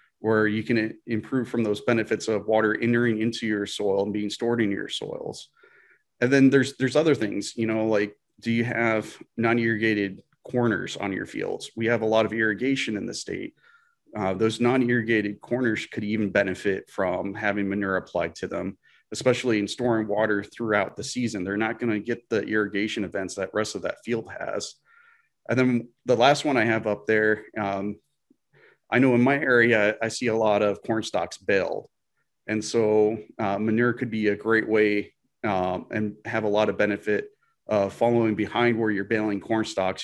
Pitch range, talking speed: 105-120 Hz, 185 wpm